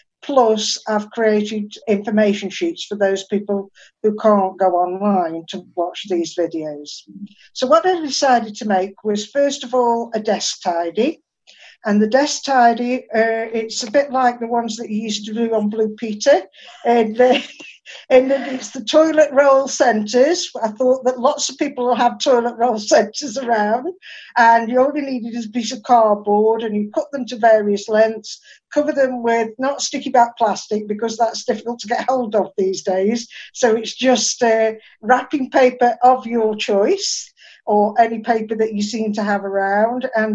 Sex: female